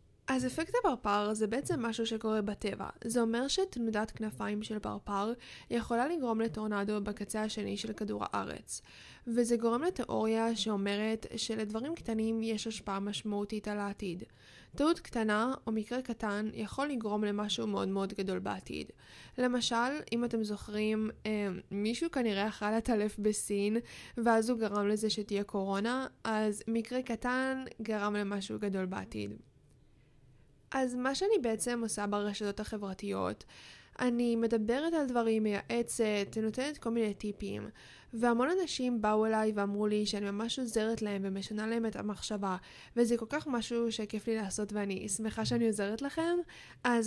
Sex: female